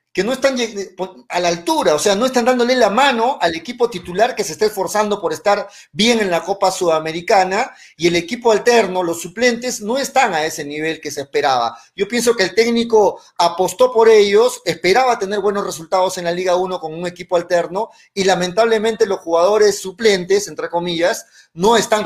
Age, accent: 40-59, Mexican